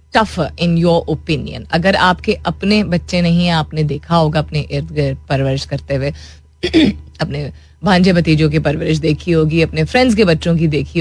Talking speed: 175 wpm